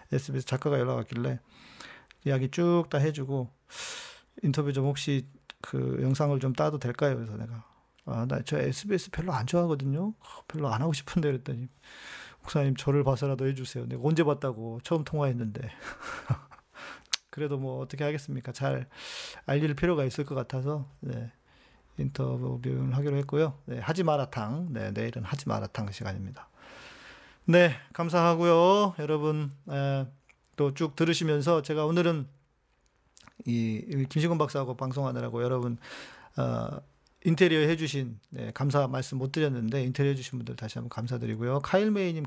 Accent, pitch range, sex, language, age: native, 125-155 Hz, male, Korean, 40-59